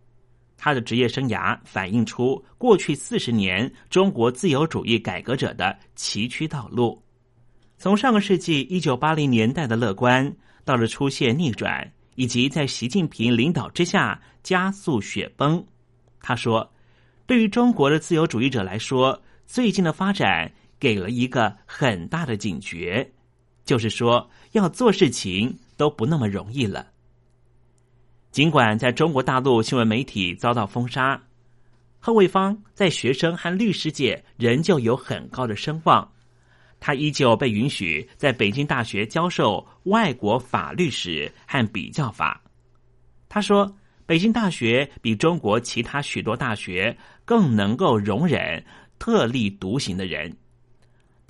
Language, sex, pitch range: Chinese, male, 115-155 Hz